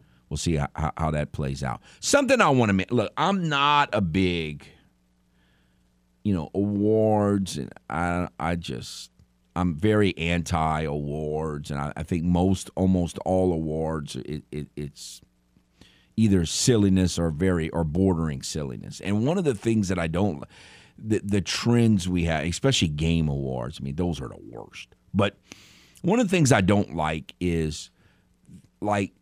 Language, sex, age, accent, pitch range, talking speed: English, male, 50-69, American, 75-120 Hz, 160 wpm